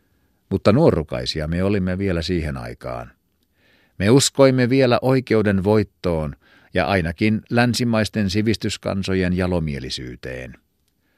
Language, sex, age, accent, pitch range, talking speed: Finnish, male, 50-69, native, 85-110 Hz, 90 wpm